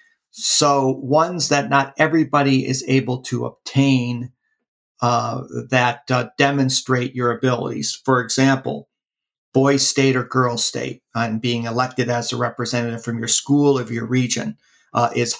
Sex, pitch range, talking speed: male, 120-140 Hz, 140 wpm